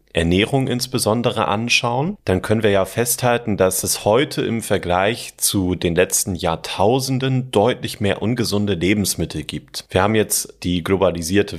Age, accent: 30-49, German